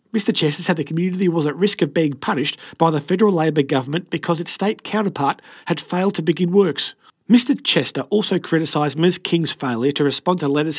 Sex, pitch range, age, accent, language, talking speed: male, 155-195 Hz, 40-59, Australian, English, 200 wpm